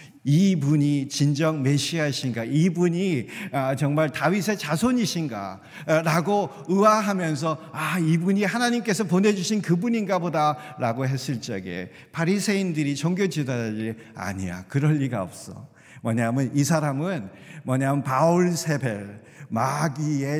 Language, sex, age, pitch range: Korean, male, 50-69, 125-170 Hz